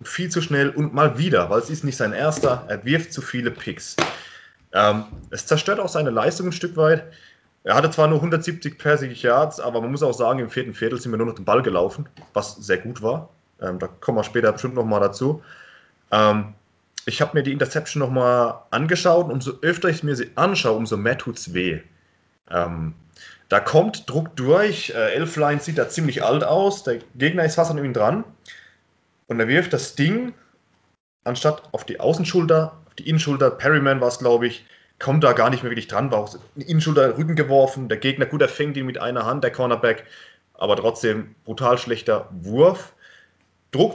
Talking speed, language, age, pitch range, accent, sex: 200 wpm, German, 20-39, 120-160 Hz, German, male